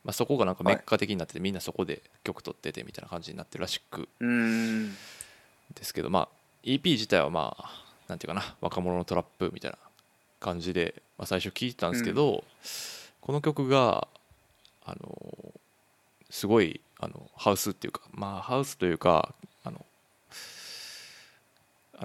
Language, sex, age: Japanese, male, 20-39